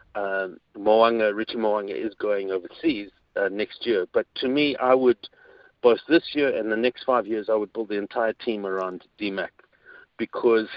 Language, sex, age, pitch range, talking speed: English, male, 50-69, 110-135 Hz, 180 wpm